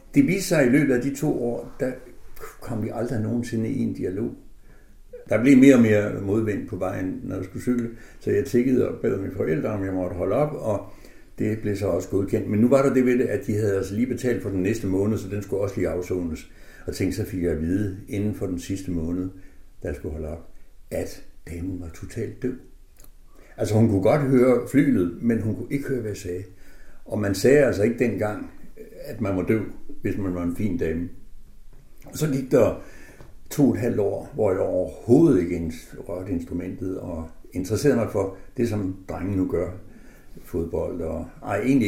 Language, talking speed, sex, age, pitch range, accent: Danish, 215 wpm, male, 60-79, 90-125 Hz, native